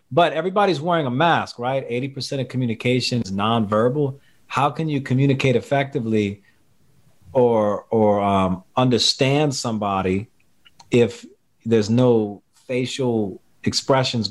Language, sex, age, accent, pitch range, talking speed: English, male, 40-59, American, 110-135 Hz, 115 wpm